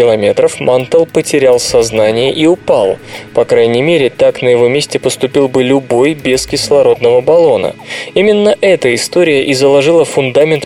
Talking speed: 135 wpm